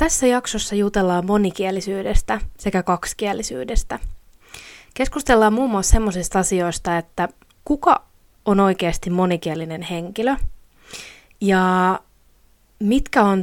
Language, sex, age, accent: Finnish, female, 20-39, native